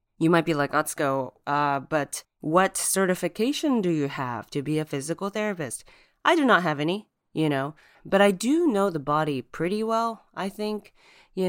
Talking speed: 190 wpm